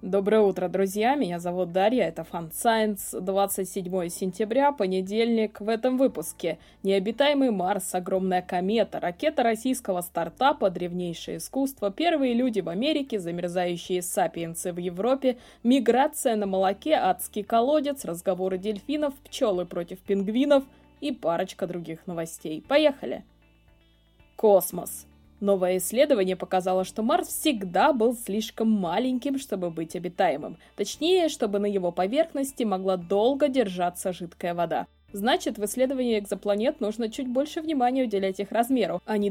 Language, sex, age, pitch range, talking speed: Russian, female, 20-39, 180-245 Hz, 125 wpm